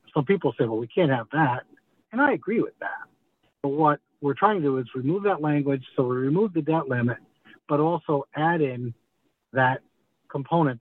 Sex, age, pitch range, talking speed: male, 60-79, 125-165 Hz, 195 wpm